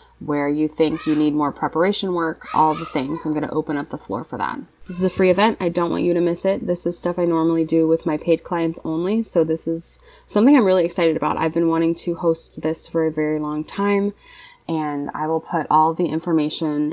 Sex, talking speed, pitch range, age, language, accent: female, 245 wpm, 150-175 Hz, 20-39, English, American